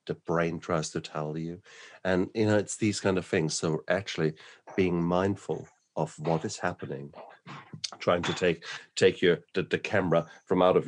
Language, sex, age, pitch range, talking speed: English, male, 50-69, 80-110 Hz, 180 wpm